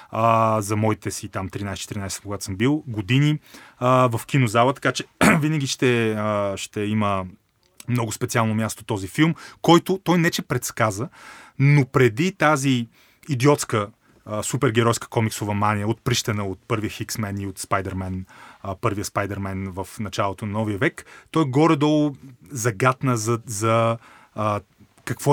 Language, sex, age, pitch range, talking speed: Bulgarian, male, 30-49, 110-145 Hz, 130 wpm